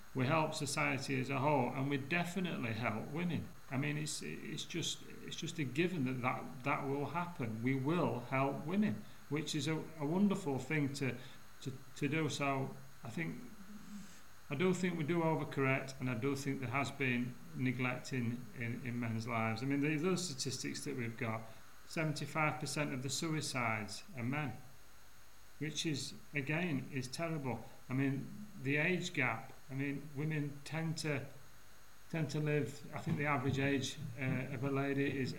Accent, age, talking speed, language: British, 40-59, 180 wpm, English